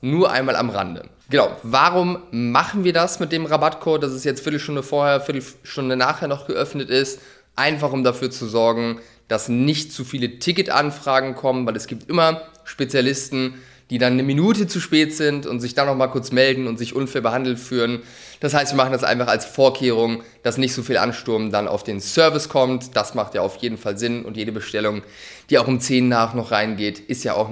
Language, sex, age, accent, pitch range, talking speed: German, male, 20-39, German, 120-145 Hz, 205 wpm